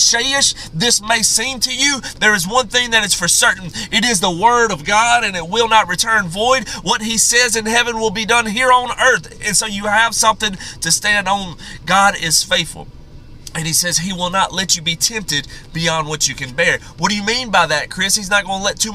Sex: male